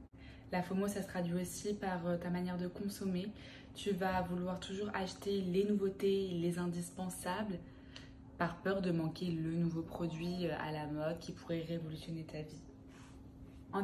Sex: female